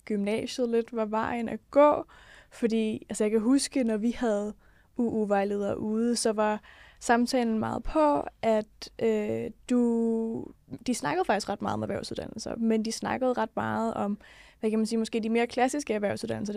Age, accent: 20-39, native